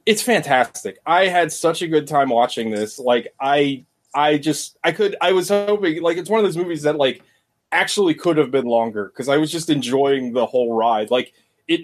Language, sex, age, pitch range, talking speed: English, male, 20-39, 140-165 Hz, 215 wpm